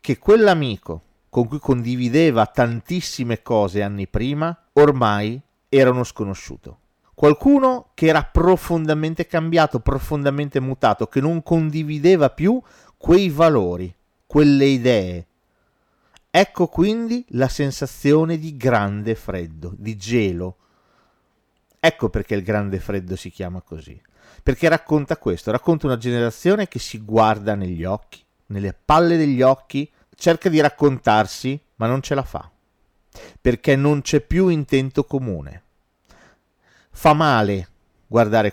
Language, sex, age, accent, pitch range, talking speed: Italian, male, 40-59, native, 105-155 Hz, 120 wpm